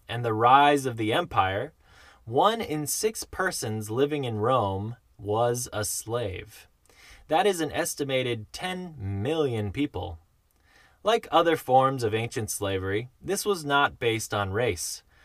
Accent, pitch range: American, 105-150 Hz